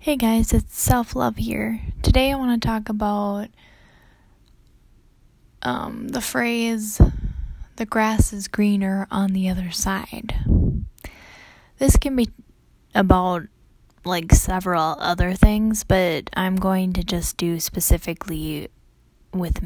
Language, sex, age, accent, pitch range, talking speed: English, female, 10-29, American, 155-225 Hz, 120 wpm